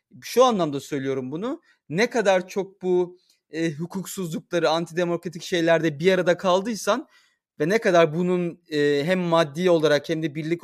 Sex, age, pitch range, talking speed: male, 30-49, 145-205 Hz, 145 wpm